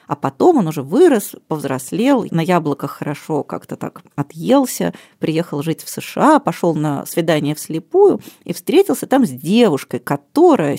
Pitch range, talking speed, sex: 160-230 Hz, 145 wpm, female